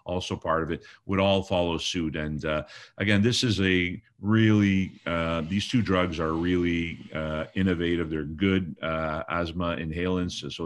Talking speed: 165 wpm